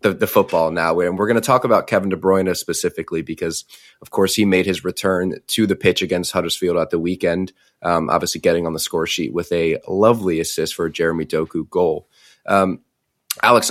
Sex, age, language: male, 20-39, English